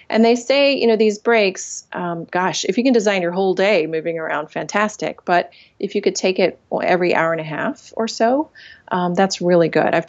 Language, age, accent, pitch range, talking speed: English, 30-49, American, 170-220 Hz, 220 wpm